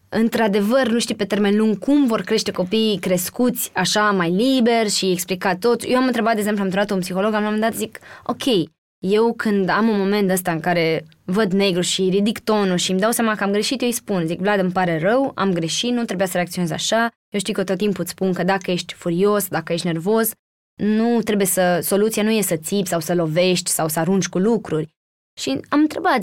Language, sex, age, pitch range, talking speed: Romanian, female, 20-39, 180-225 Hz, 230 wpm